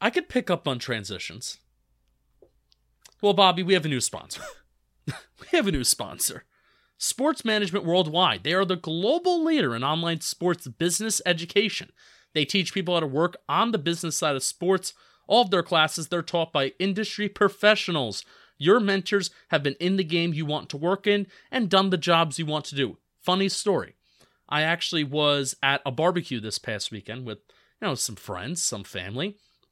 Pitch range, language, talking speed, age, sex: 135-195 Hz, English, 180 wpm, 30-49, male